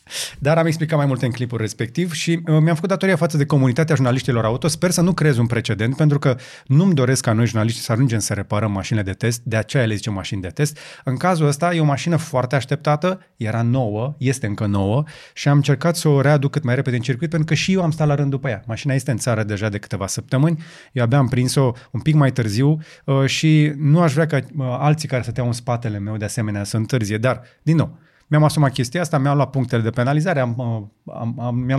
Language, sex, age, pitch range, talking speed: Romanian, male, 30-49, 115-150 Hz, 230 wpm